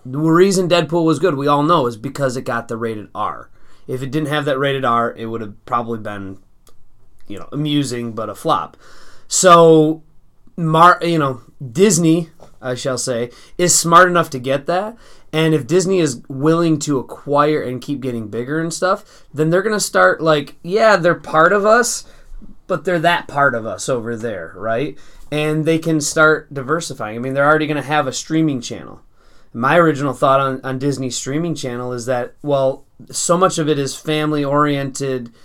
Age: 20-39